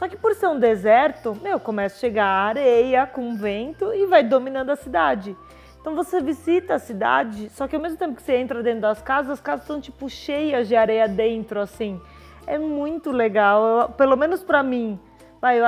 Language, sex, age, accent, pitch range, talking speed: Portuguese, female, 20-39, Brazilian, 235-275 Hz, 200 wpm